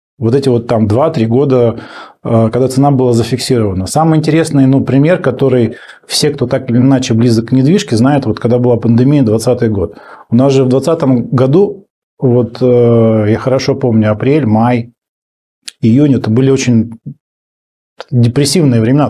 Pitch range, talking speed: 115-140 Hz, 155 wpm